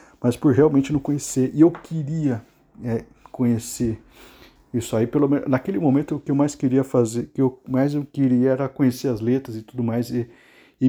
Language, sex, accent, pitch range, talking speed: Portuguese, male, Brazilian, 115-135 Hz, 200 wpm